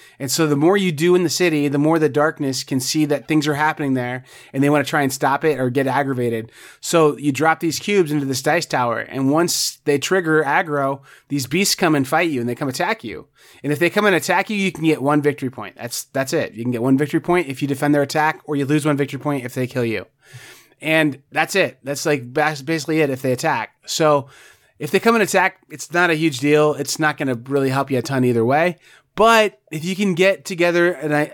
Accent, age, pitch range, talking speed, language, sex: American, 30-49, 135-165 Hz, 255 wpm, English, male